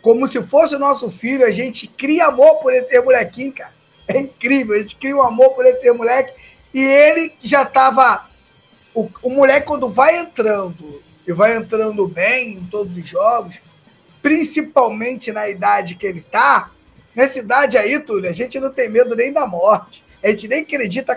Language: Portuguese